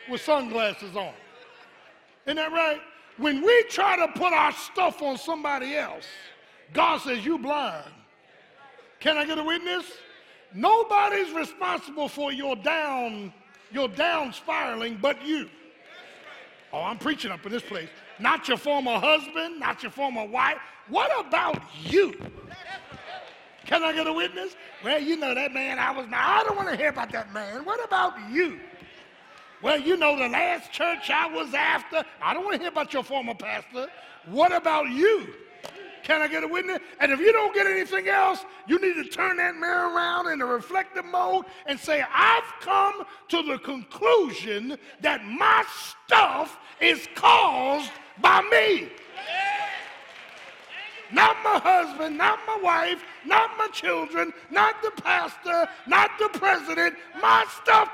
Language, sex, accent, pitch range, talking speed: English, male, American, 280-375 Hz, 155 wpm